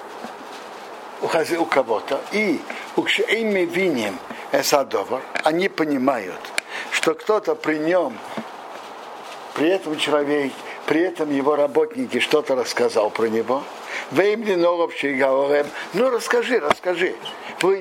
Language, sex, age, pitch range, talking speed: Russian, male, 60-79, 155-230 Hz, 100 wpm